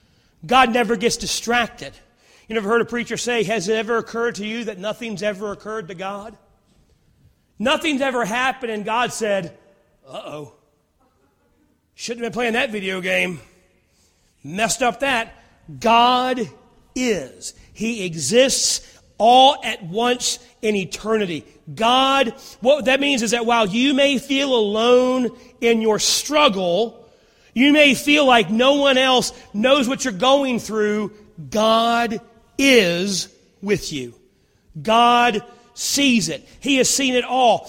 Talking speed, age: 140 wpm, 40-59